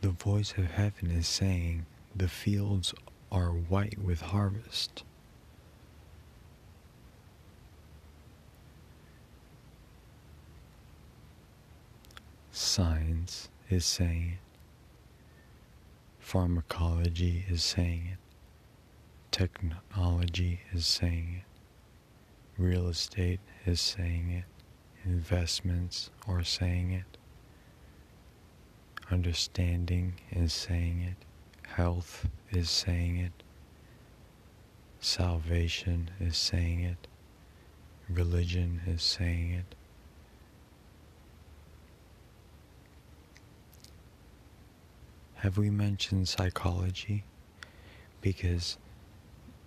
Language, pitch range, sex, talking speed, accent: English, 85-95 Hz, male, 65 wpm, American